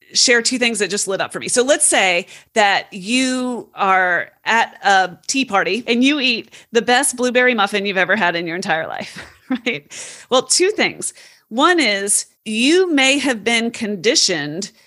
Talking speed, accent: 180 wpm, American